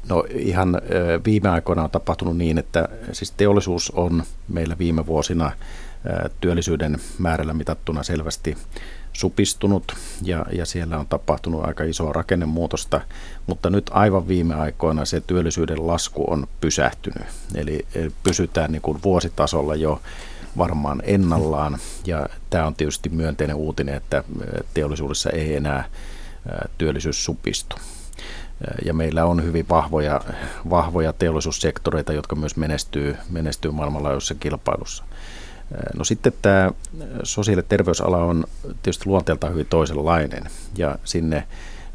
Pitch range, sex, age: 75-85 Hz, male, 50-69